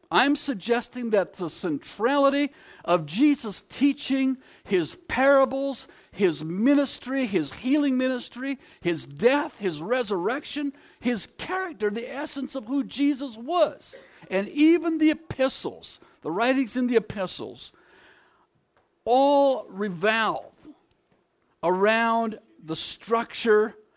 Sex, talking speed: male, 105 wpm